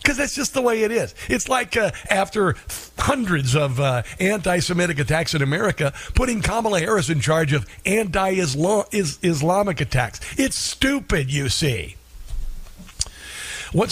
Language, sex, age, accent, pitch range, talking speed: English, male, 50-69, American, 130-180 Hz, 140 wpm